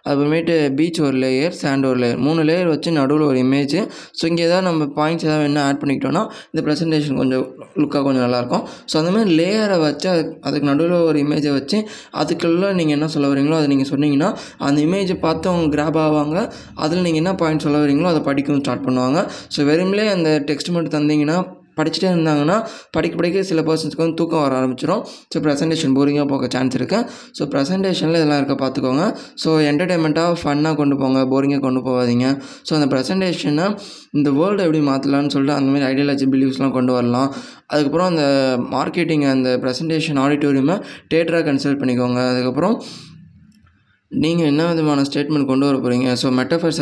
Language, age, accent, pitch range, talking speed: Tamil, 20-39, native, 135-160 Hz, 170 wpm